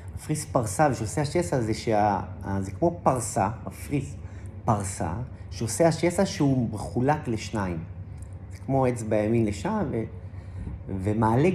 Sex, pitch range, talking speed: male, 95-140 Hz, 120 wpm